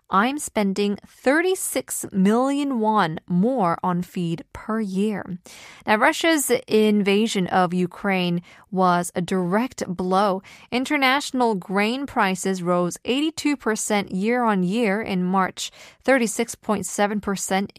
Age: 20-39